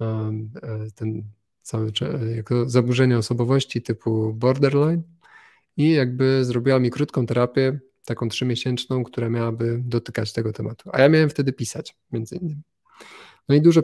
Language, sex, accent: Polish, male, native